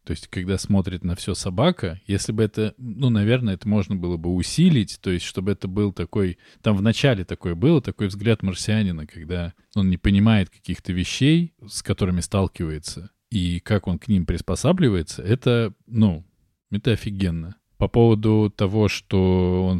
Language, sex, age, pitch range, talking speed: Russian, male, 20-39, 90-110 Hz, 165 wpm